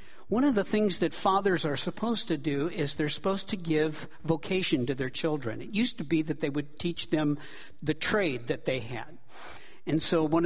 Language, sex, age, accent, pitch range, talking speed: English, male, 60-79, American, 150-190 Hz, 205 wpm